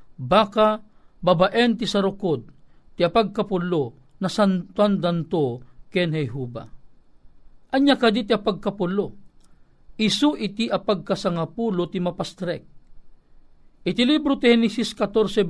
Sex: male